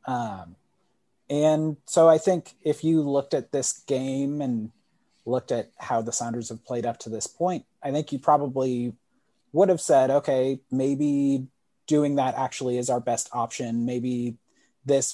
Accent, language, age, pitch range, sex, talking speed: American, English, 30-49, 120-150 Hz, male, 165 wpm